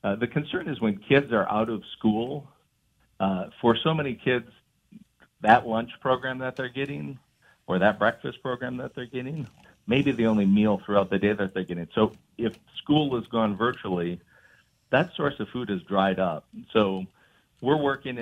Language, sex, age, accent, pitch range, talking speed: English, male, 50-69, American, 100-120 Hz, 180 wpm